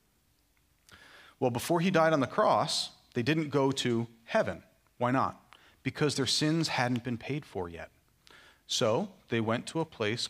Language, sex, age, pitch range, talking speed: English, male, 30-49, 110-150 Hz, 165 wpm